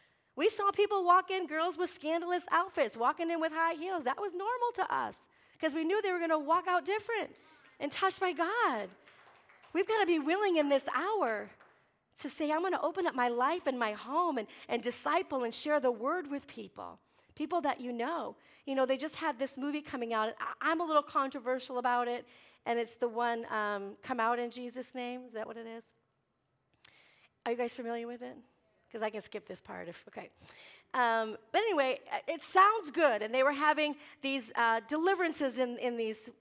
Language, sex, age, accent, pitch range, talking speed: English, female, 40-59, American, 245-340 Hz, 210 wpm